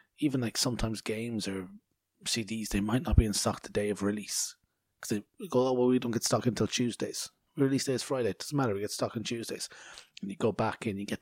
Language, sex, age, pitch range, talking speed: English, male, 30-49, 100-120 Hz, 245 wpm